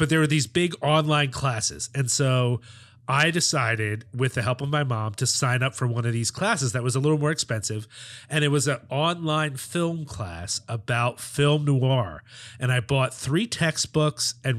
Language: English